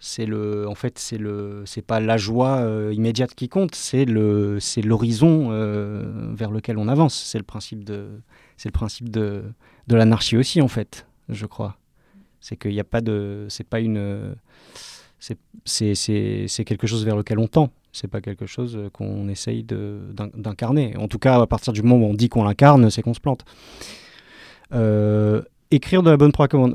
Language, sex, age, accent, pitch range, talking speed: French, male, 30-49, French, 105-125 Hz, 195 wpm